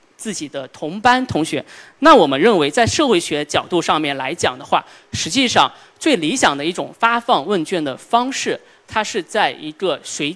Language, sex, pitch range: Chinese, male, 170-280 Hz